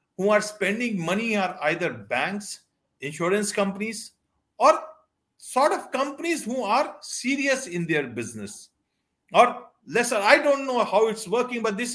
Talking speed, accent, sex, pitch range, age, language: 145 wpm, Indian, male, 205-285 Hz, 50-69, English